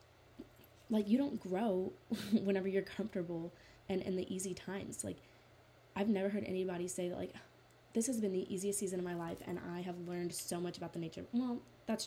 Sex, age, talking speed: female, 20-39, 200 wpm